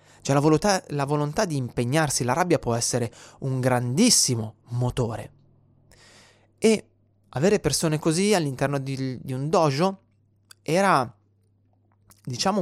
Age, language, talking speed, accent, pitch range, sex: 30-49, Italian, 115 wpm, native, 110-155 Hz, male